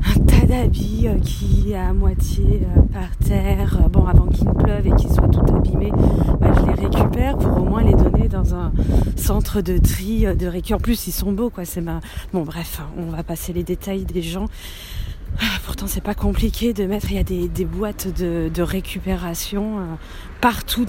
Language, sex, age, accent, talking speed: French, female, 30-49, French, 195 wpm